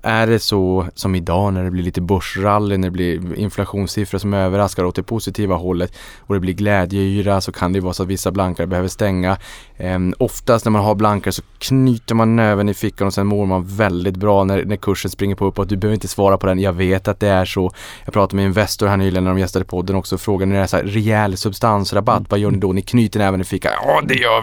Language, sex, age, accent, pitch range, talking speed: Swedish, male, 20-39, Norwegian, 95-110 Hz, 255 wpm